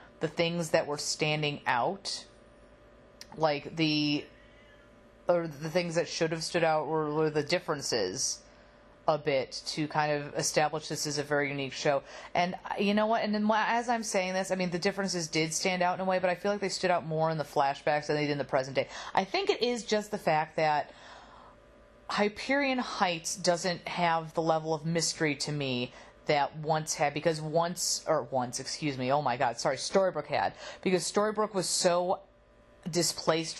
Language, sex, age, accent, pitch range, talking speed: English, female, 30-49, American, 150-180 Hz, 195 wpm